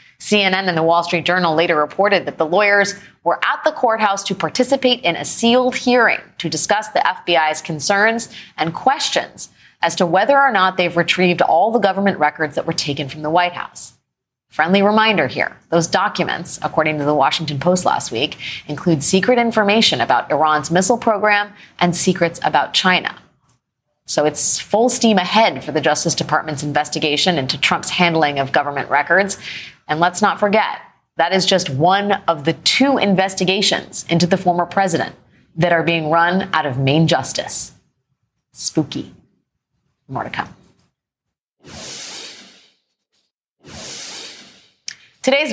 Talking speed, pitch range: 150 wpm, 155-200 Hz